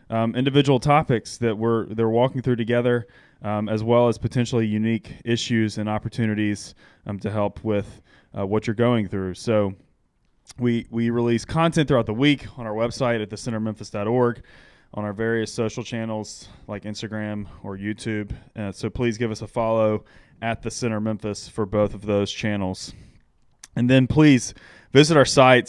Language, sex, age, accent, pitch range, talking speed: English, male, 20-39, American, 105-120 Hz, 170 wpm